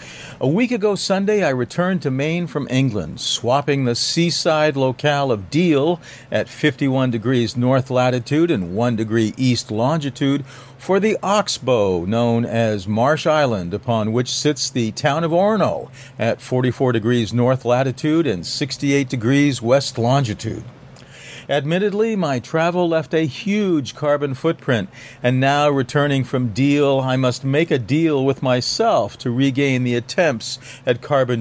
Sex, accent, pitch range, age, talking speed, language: male, American, 125-155 Hz, 50-69, 145 wpm, English